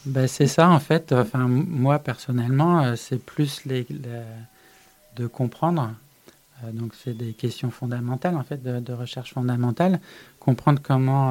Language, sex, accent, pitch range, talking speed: French, male, French, 120-145 Hz, 145 wpm